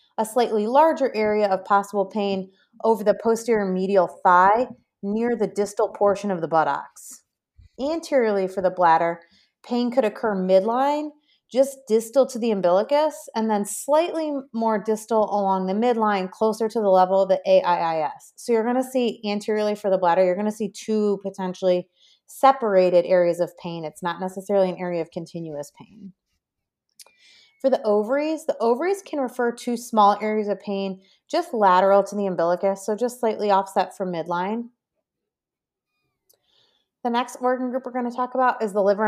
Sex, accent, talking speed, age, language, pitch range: female, American, 165 wpm, 30-49, English, 190-245 Hz